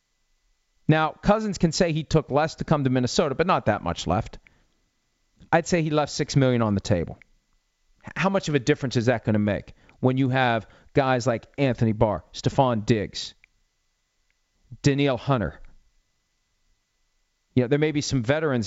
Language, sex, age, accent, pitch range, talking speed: English, male, 40-59, American, 105-140 Hz, 170 wpm